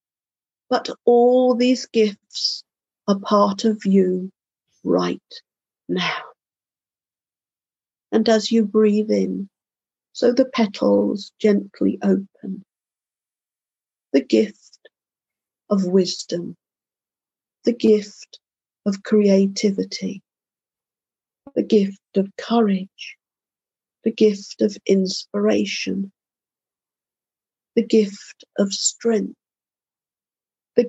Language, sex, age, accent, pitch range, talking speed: English, female, 50-69, British, 195-225 Hz, 80 wpm